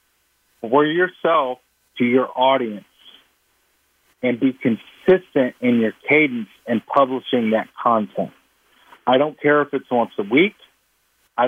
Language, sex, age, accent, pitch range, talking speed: English, male, 50-69, American, 120-145 Hz, 125 wpm